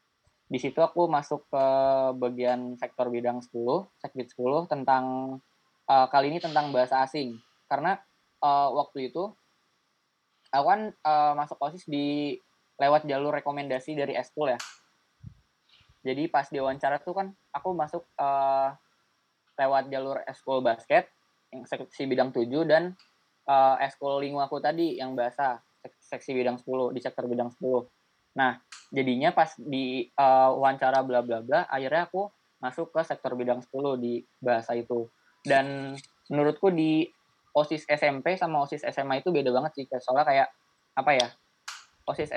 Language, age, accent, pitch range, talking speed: Indonesian, 20-39, native, 130-150 Hz, 140 wpm